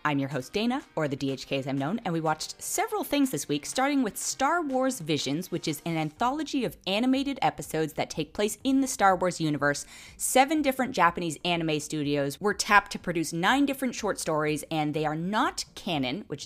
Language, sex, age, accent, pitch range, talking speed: English, female, 20-39, American, 150-215 Hz, 205 wpm